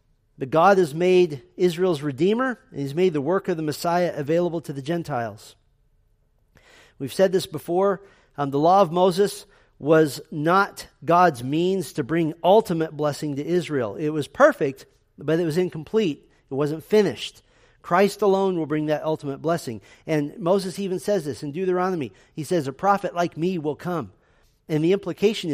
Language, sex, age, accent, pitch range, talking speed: English, male, 40-59, American, 150-190 Hz, 170 wpm